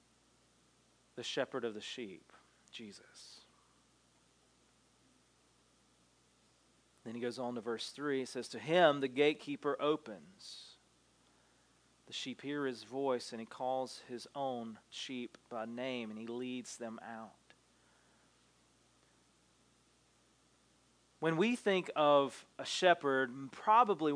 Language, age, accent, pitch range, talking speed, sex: English, 30-49, American, 130-180 Hz, 110 wpm, male